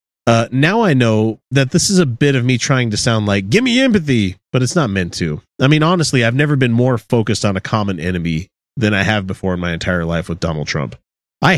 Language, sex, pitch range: English, male, 95-125 Hz